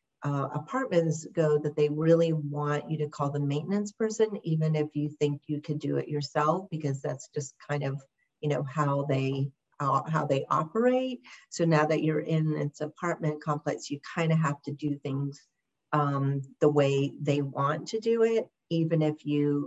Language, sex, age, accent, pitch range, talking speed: English, female, 50-69, American, 150-170 Hz, 185 wpm